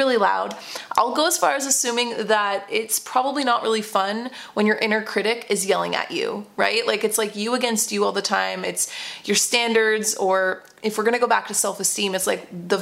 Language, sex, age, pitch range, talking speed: English, female, 20-39, 200-240 Hz, 220 wpm